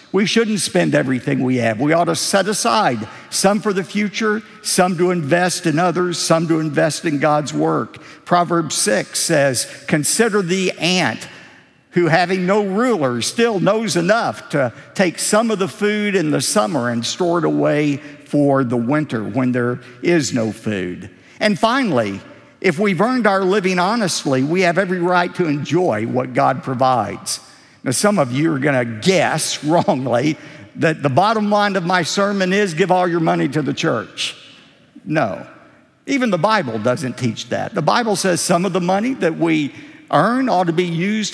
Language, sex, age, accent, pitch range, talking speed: English, male, 50-69, American, 150-205 Hz, 175 wpm